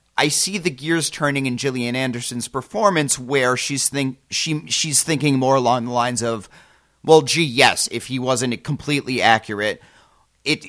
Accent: American